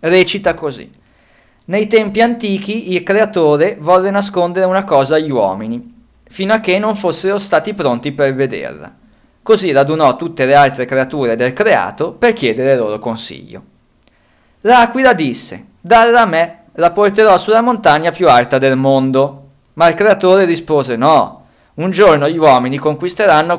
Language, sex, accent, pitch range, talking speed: Italian, male, native, 140-205 Hz, 150 wpm